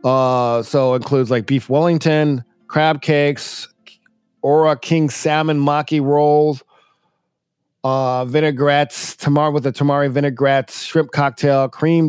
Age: 40-59